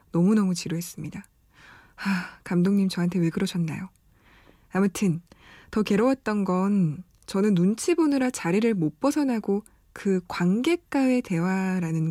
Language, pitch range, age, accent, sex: Korean, 175-240 Hz, 20-39, native, female